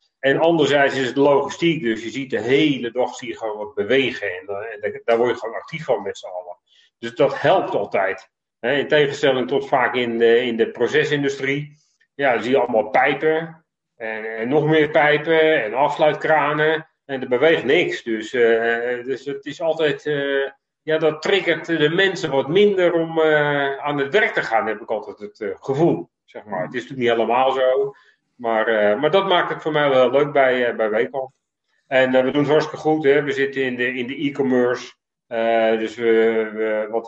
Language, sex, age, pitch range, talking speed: Dutch, male, 40-59, 125-160 Hz, 205 wpm